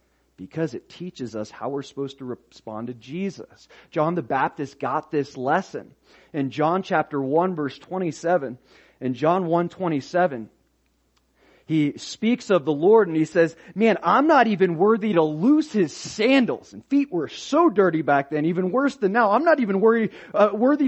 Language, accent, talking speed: English, American, 175 wpm